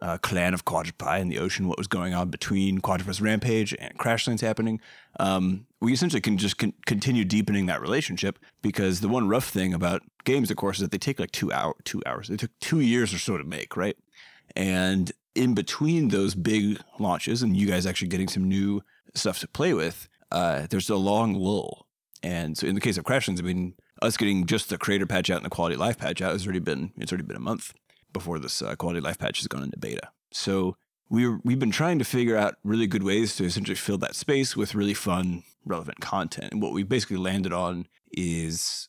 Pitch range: 90-110 Hz